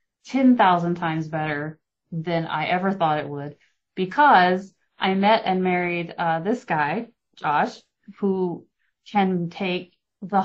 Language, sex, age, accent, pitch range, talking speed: English, female, 30-49, American, 155-180 Hz, 125 wpm